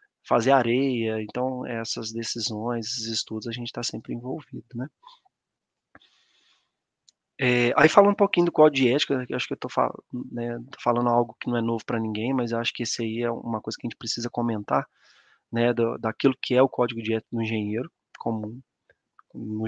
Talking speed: 190 wpm